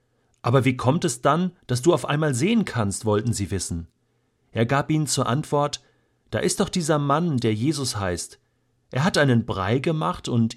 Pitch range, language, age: 110-135 Hz, German, 40-59